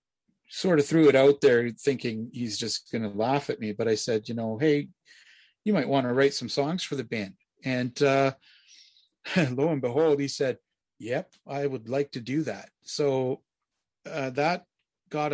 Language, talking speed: English, 190 wpm